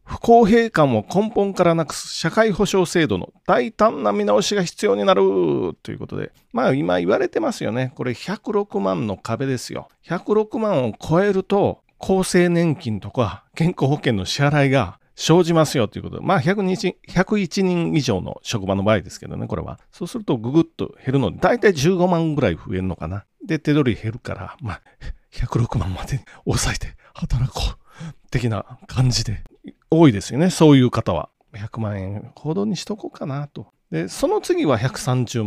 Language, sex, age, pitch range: Japanese, male, 40-59, 115-190 Hz